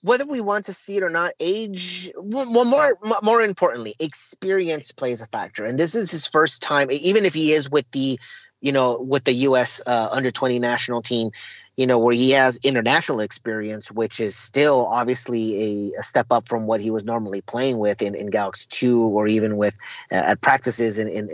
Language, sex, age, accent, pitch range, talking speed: English, male, 30-49, American, 115-150 Hz, 205 wpm